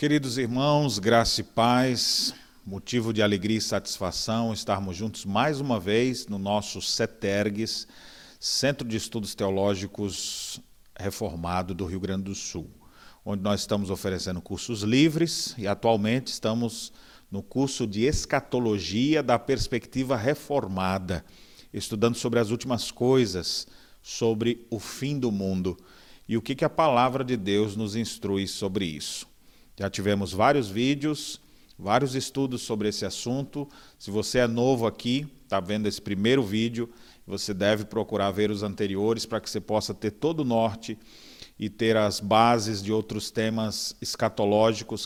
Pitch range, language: 100-120 Hz, Portuguese